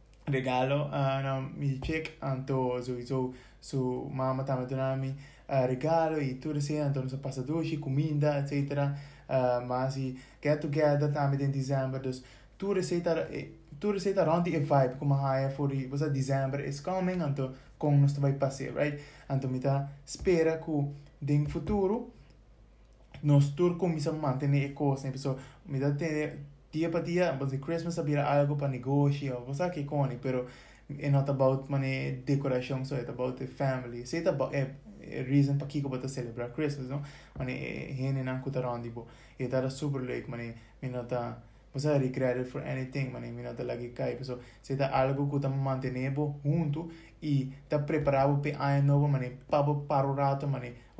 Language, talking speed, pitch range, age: English, 170 wpm, 130-150 Hz, 20-39